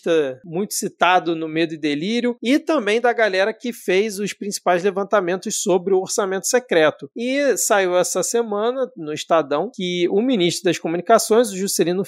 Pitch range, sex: 175-230 Hz, male